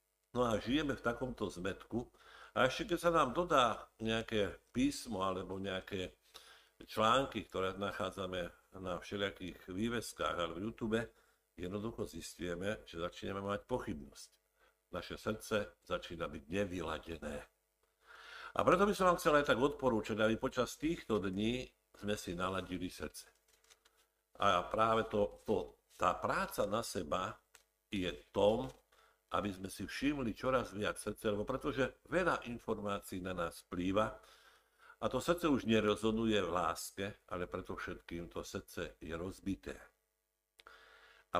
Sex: male